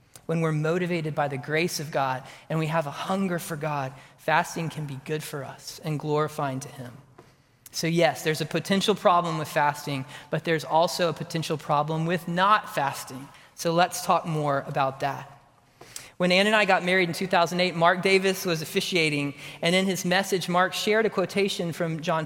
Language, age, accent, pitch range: English, 30-49, American, 145-175 Hz